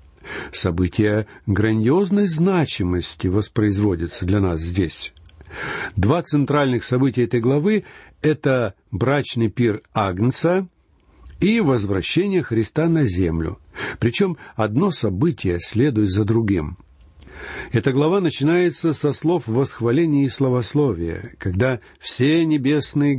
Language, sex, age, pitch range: Russian, male, 60-79, 105-145 Hz